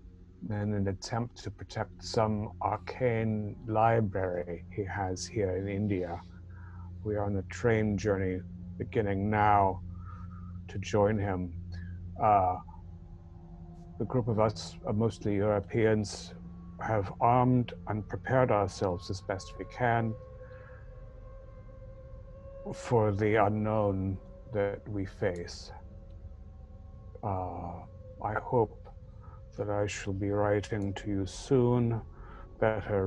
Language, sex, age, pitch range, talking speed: English, male, 60-79, 90-110 Hz, 105 wpm